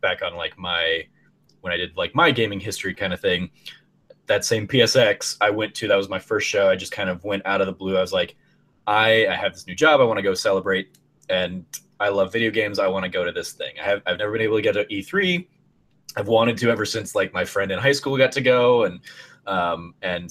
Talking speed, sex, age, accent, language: 255 wpm, male, 20-39, American, English